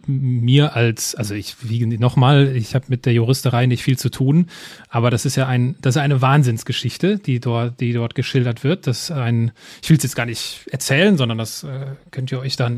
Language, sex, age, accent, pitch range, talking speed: German, male, 30-49, German, 125-150 Hz, 215 wpm